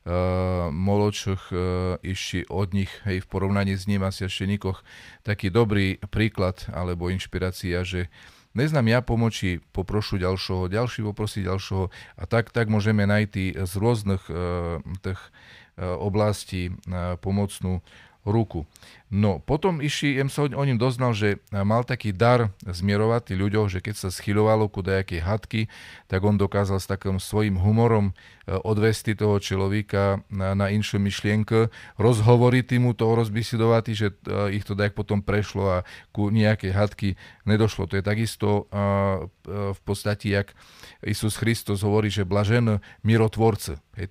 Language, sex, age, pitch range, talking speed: Slovak, male, 40-59, 95-110 Hz, 135 wpm